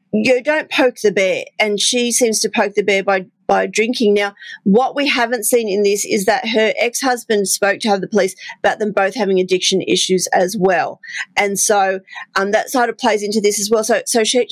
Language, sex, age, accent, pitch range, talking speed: English, female, 40-59, Australian, 200-235 Hz, 225 wpm